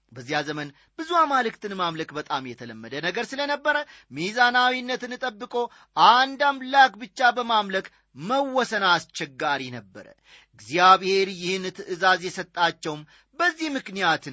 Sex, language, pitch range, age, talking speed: male, Amharic, 160-250 Hz, 30-49, 100 wpm